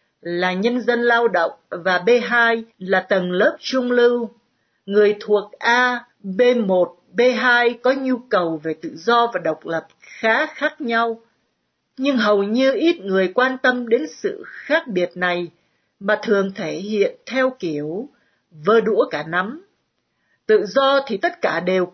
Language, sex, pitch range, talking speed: Vietnamese, female, 190-260 Hz, 155 wpm